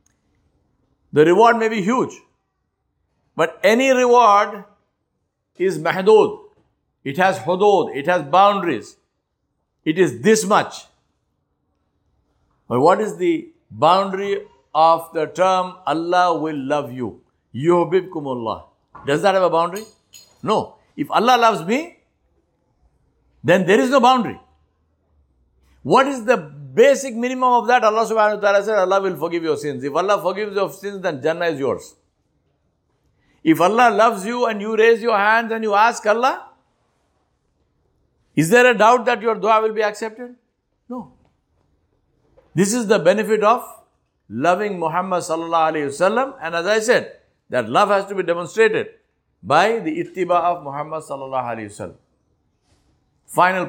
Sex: male